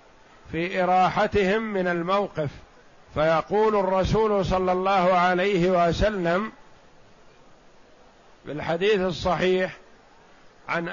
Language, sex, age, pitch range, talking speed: Arabic, male, 50-69, 175-205 Hz, 70 wpm